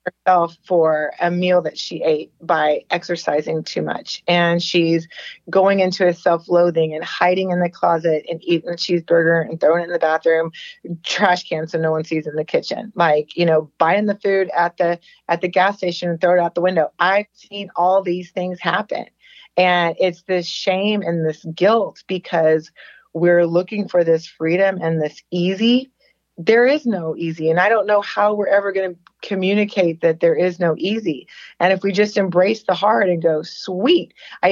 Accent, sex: American, female